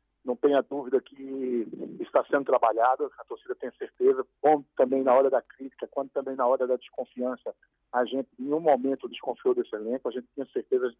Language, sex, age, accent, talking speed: Portuguese, male, 40-59, Brazilian, 200 wpm